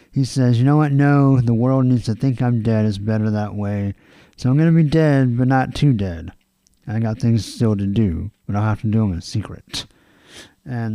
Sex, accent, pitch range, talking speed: male, American, 110-145 Hz, 230 wpm